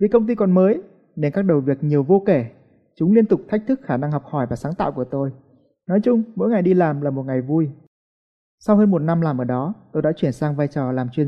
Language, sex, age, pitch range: Vietnamese, male, 20-39, 145-195 Hz